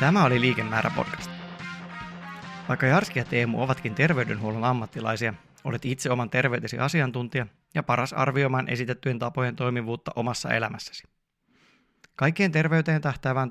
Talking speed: 120 wpm